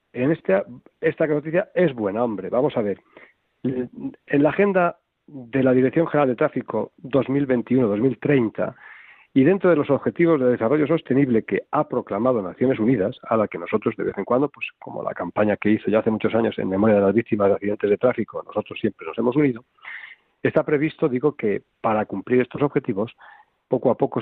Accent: Spanish